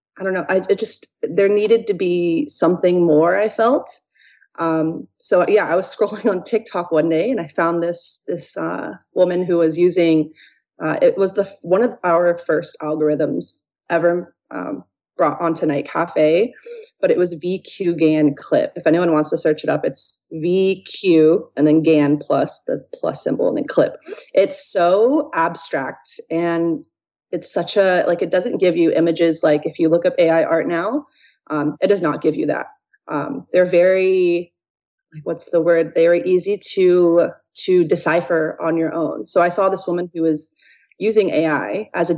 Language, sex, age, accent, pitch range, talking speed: English, female, 30-49, American, 165-200 Hz, 180 wpm